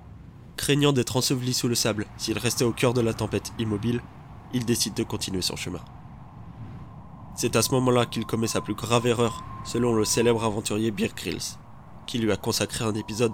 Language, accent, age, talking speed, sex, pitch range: French, French, 20-39, 190 wpm, male, 105-125 Hz